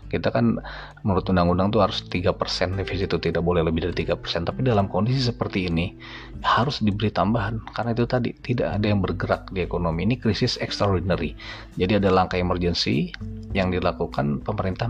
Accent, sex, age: native, male, 30-49